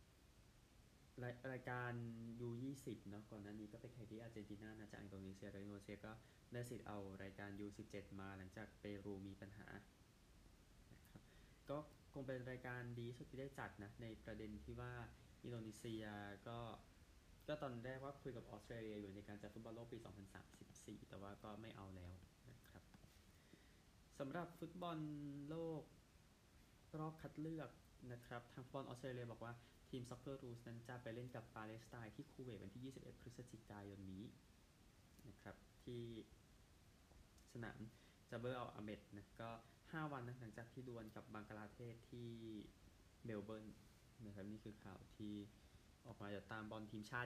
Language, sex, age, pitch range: Thai, male, 20-39, 100-120 Hz